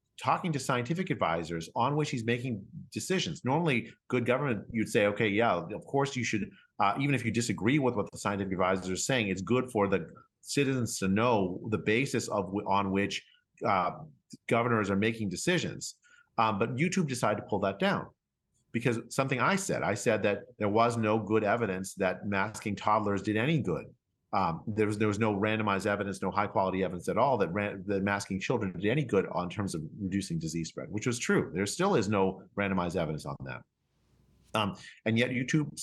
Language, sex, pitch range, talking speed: English, male, 100-130 Hz, 200 wpm